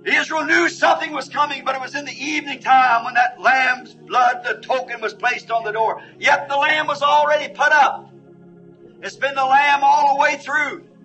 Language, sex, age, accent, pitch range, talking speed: English, male, 50-69, American, 230-285 Hz, 205 wpm